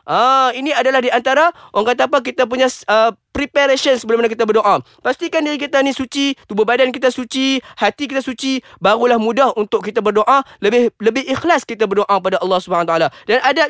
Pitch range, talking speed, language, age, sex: 215-270 Hz, 195 wpm, Malay, 20-39, male